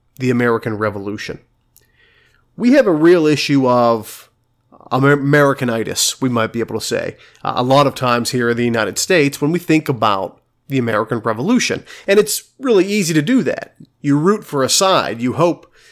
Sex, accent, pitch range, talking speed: male, American, 120-160 Hz, 175 wpm